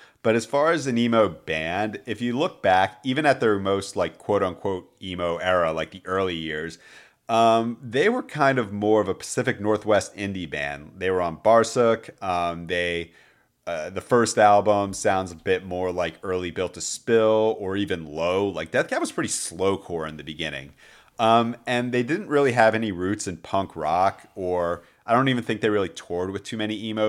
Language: English